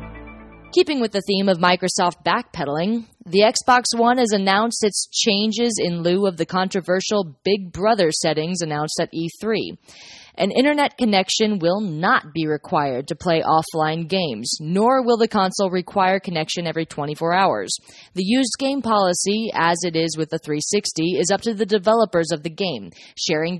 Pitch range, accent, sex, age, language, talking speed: 165-210 Hz, American, female, 20-39, English, 165 wpm